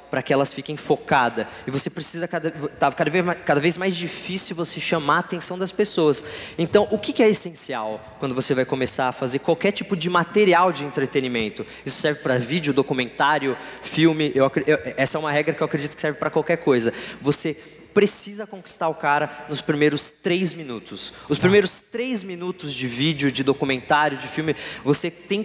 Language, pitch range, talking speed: Portuguese, 145-175 Hz, 185 wpm